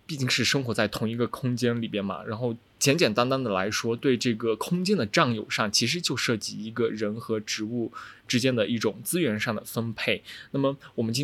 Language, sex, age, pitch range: Chinese, male, 20-39, 105-130 Hz